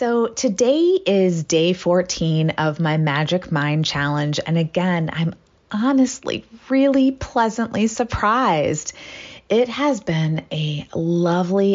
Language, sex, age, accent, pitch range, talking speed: English, female, 30-49, American, 155-205 Hz, 110 wpm